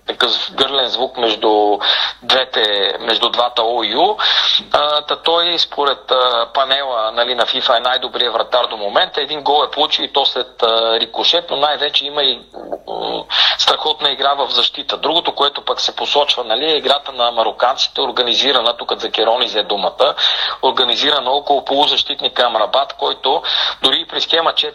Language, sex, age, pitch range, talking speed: Bulgarian, male, 40-59, 115-140 Hz, 155 wpm